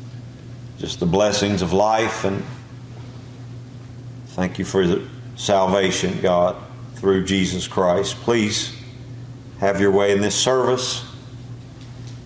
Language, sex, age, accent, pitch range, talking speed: English, male, 50-69, American, 95-125 Hz, 110 wpm